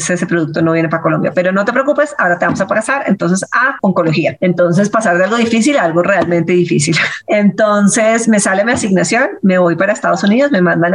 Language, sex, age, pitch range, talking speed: Spanish, female, 30-49, 175-225 Hz, 215 wpm